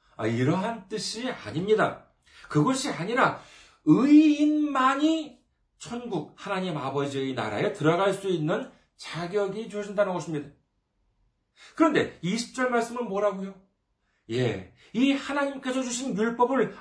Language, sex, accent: Korean, male, native